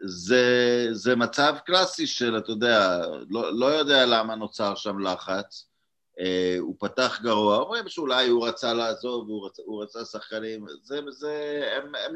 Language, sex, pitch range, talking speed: Hebrew, male, 110-150 Hz, 150 wpm